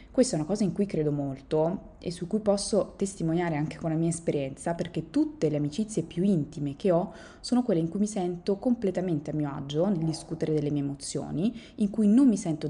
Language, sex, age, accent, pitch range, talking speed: Italian, female, 20-39, native, 150-185 Hz, 215 wpm